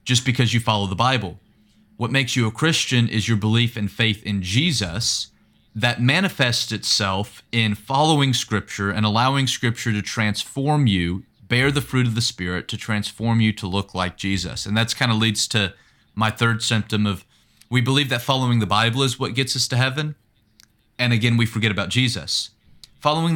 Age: 30-49